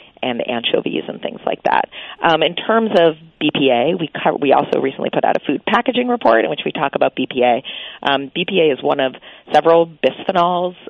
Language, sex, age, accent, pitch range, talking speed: English, female, 40-59, American, 135-155 Hz, 195 wpm